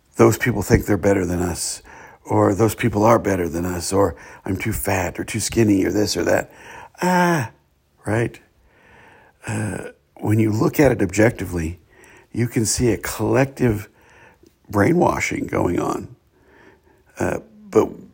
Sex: male